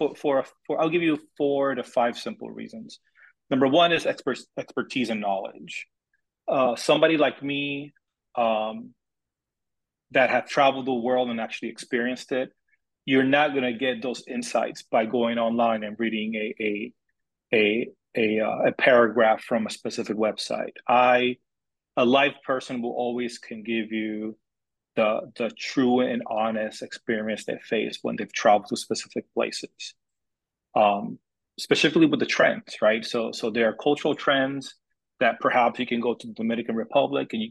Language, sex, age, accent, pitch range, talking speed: English, male, 30-49, American, 110-135 Hz, 165 wpm